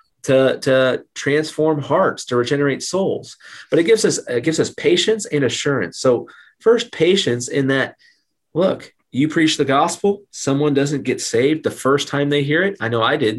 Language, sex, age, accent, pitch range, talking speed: English, male, 30-49, American, 120-145 Hz, 185 wpm